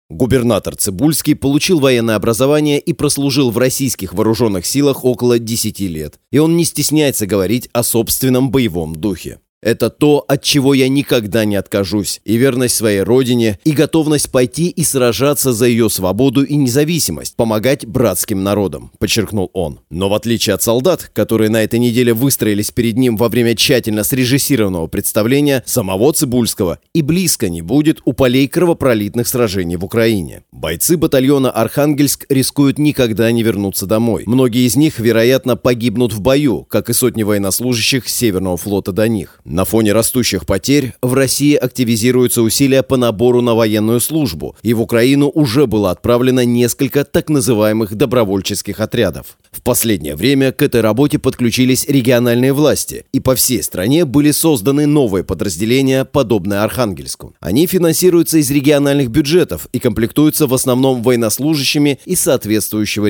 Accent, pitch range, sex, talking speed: native, 110-140 Hz, male, 150 wpm